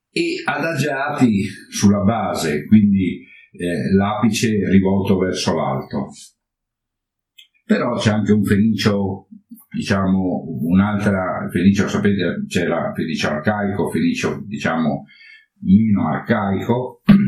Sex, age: male, 50-69